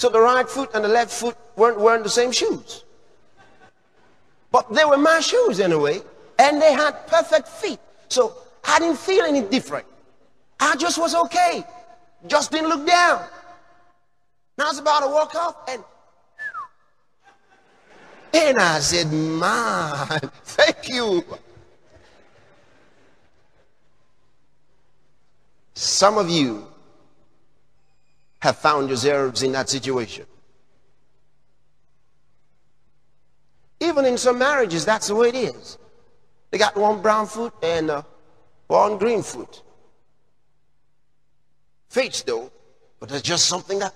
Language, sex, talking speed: English, male, 115 wpm